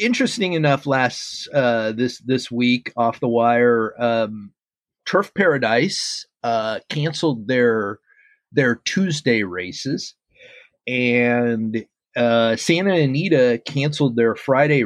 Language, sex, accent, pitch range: English, male, American, 105-130 Hz